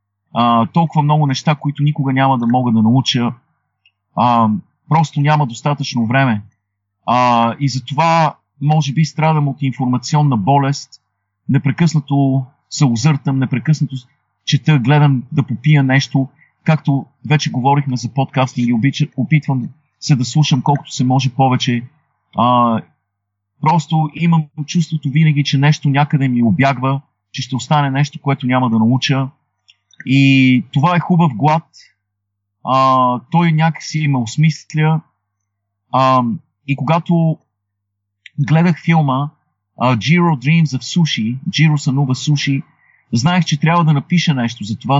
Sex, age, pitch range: male, 40-59, 120-155 Hz